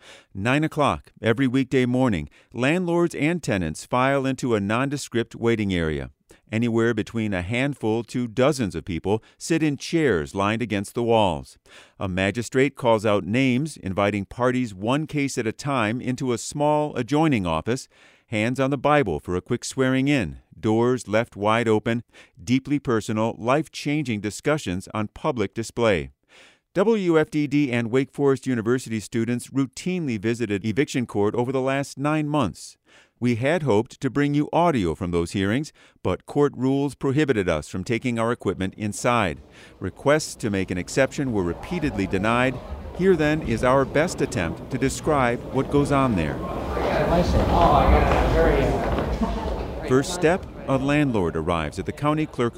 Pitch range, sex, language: 105-140 Hz, male, English